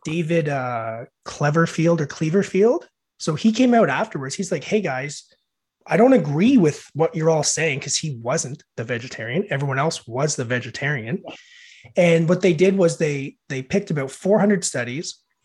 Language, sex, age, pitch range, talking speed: English, male, 30-49, 150-205 Hz, 165 wpm